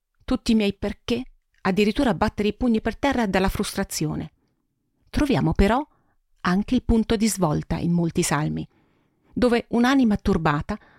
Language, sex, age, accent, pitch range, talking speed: Italian, female, 40-59, native, 165-230 Hz, 135 wpm